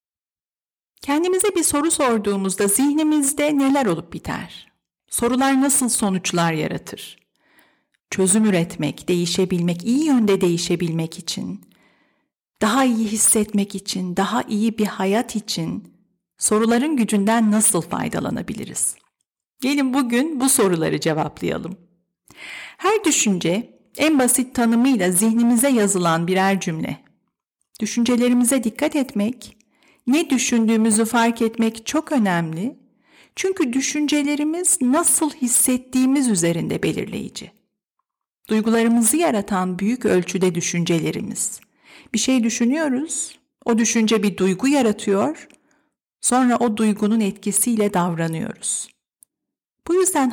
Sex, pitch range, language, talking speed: female, 195-270 Hz, Turkish, 95 wpm